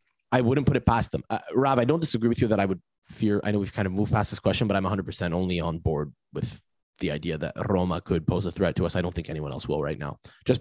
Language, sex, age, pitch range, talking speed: English, male, 20-39, 90-105 Hz, 295 wpm